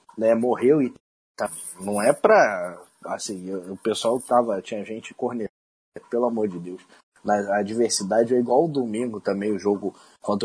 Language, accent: Portuguese, Brazilian